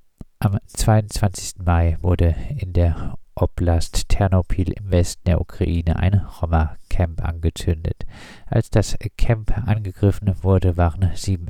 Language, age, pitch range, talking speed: German, 50-69, 85-95 Hz, 115 wpm